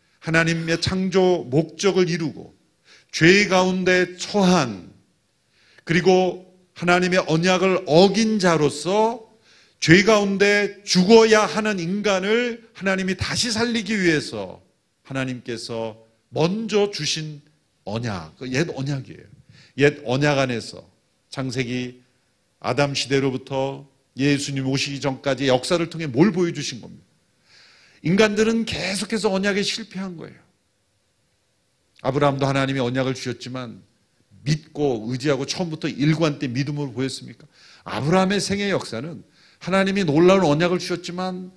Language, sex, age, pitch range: Korean, male, 40-59, 135-190 Hz